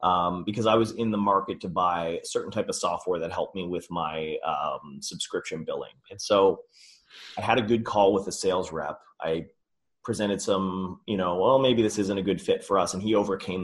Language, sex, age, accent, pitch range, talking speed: English, male, 30-49, American, 95-115 Hz, 220 wpm